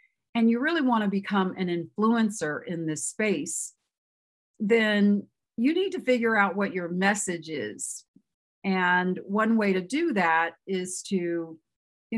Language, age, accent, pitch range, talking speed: English, 50-69, American, 175-215 Hz, 150 wpm